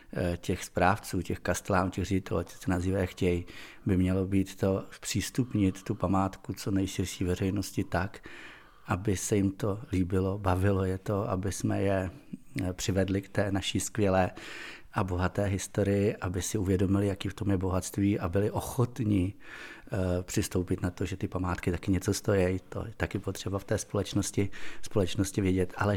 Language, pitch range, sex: Czech, 95-105 Hz, male